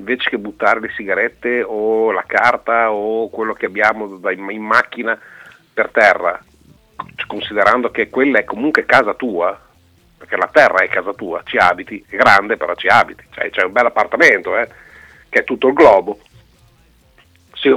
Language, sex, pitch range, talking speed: Italian, male, 90-145 Hz, 160 wpm